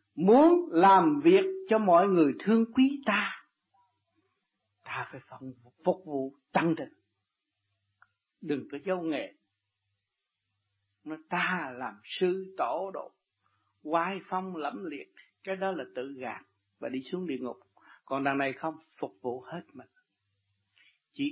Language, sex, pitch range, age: Vietnamese, male, 120-195 Hz, 60-79